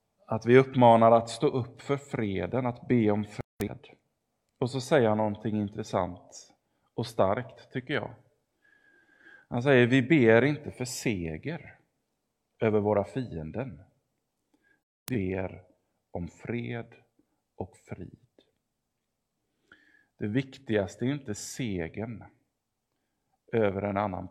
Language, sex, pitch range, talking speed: English, male, 95-130 Hz, 115 wpm